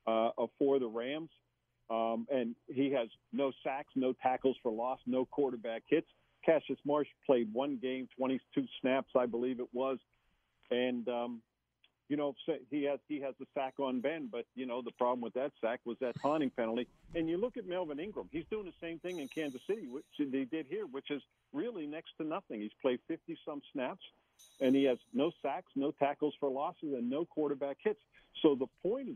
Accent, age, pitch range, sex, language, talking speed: American, 50-69, 120-150 Hz, male, English, 200 wpm